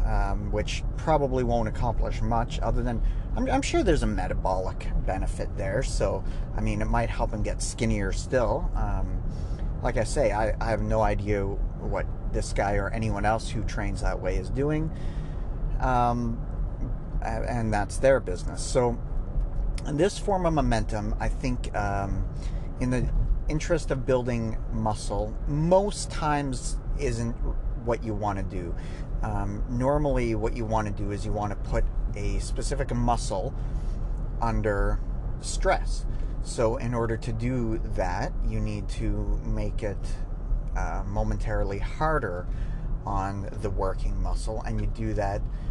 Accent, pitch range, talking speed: American, 100-120 Hz, 150 wpm